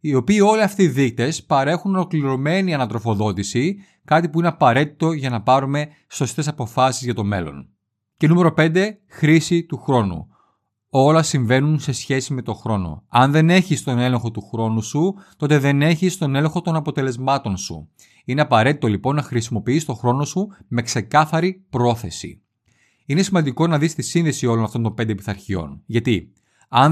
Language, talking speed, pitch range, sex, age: Greek, 165 wpm, 115-165 Hz, male, 30-49